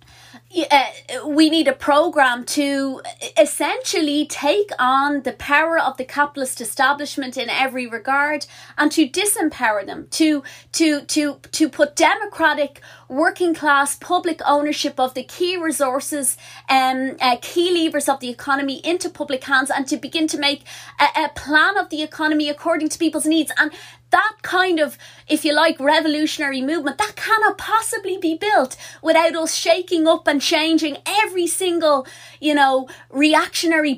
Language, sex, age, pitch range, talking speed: English, female, 30-49, 275-325 Hz, 150 wpm